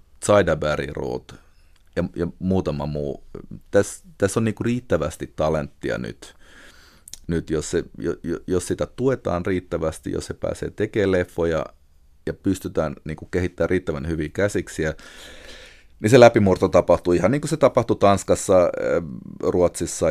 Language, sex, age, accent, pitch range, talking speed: Finnish, male, 30-49, native, 80-95 Hz, 130 wpm